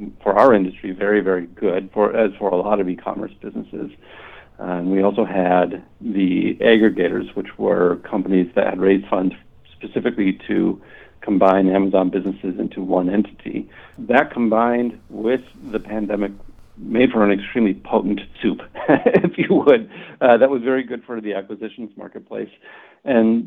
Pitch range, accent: 95-115 Hz, American